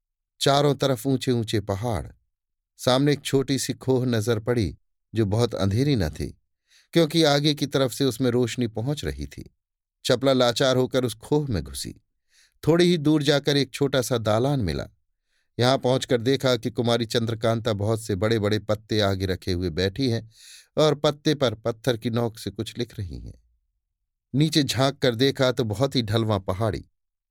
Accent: native